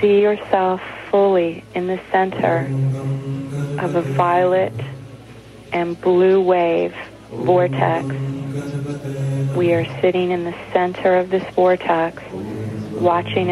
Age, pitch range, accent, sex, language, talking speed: 40-59, 115-180 Hz, American, female, English, 100 wpm